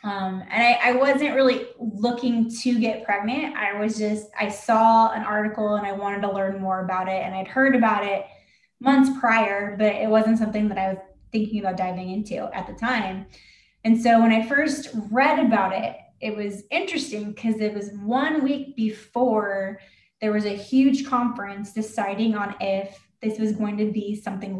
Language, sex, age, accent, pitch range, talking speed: English, female, 10-29, American, 205-245 Hz, 185 wpm